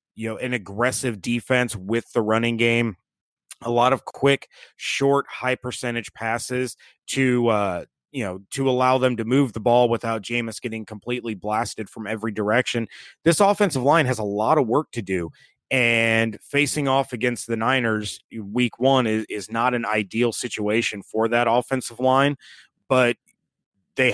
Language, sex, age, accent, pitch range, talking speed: English, male, 30-49, American, 110-130 Hz, 165 wpm